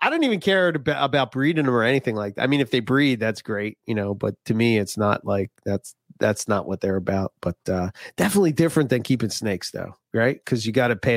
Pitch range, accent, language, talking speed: 105-140 Hz, American, English, 255 wpm